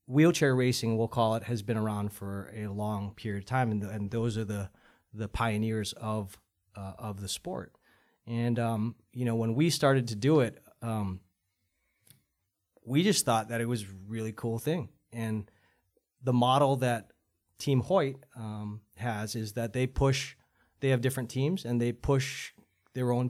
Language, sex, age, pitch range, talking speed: English, male, 20-39, 105-130 Hz, 180 wpm